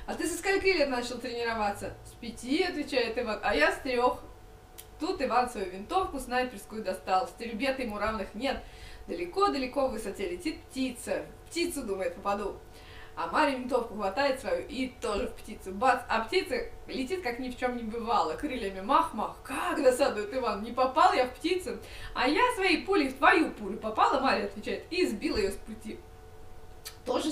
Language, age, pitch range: Russian, 20-39, 225-315 Hz